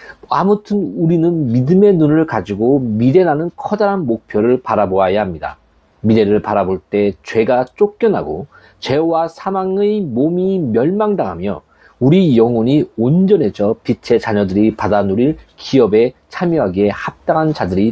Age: 40-59